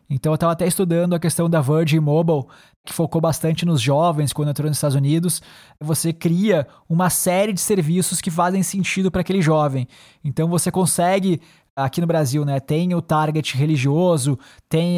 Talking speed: 175 wpm